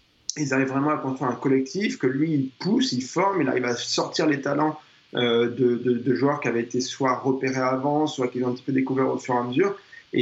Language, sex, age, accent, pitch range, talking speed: French, male, 20-39, French, 125-145 Hz, 255 wpm